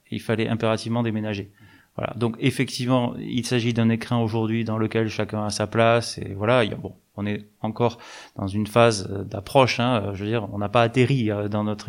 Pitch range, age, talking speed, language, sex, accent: 105-125 Hz, 20-39, 190 wpm, French, male, French